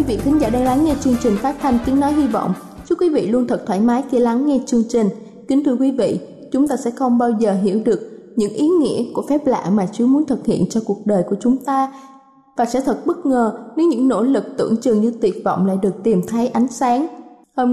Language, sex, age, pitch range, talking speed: Vietnamese, female, 20-39, 225-270 Hz, 260 wpm